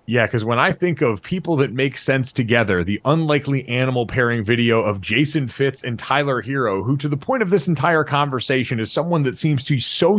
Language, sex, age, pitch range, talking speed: English, male, 30-49, 135-175 Hz, 210 wpm